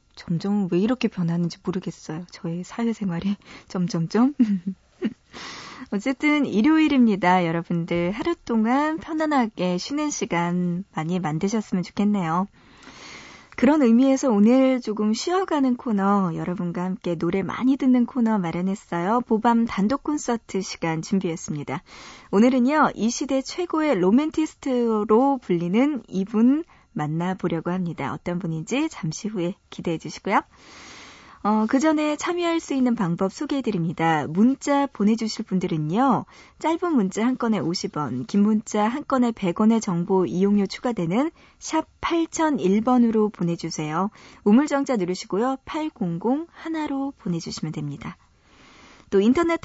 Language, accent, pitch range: Korean, native, 180-265 Hz